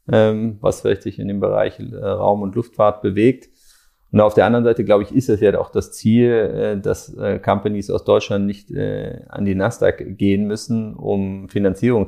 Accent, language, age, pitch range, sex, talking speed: German, German, 30-49, 95-110 Hz, male, 175 wpm